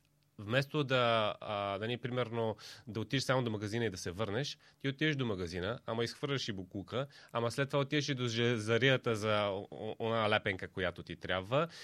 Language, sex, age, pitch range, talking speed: Bulgarian, male, 30-49, 115-145 Hz, 170 wpm